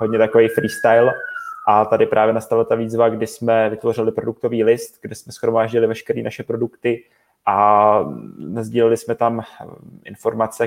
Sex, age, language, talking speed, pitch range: male, 20-39, Czech, 140 wpm, 110-115 Hz